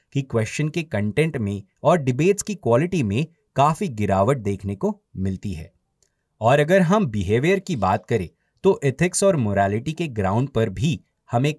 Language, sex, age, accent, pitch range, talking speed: Hindi, male, 30-49, native, 105-160 Hz, 165 wpm